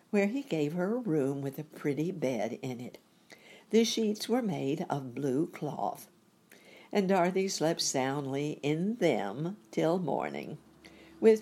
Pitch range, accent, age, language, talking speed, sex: 145-210 Hz, American, 60-79, English, 145 wpm, female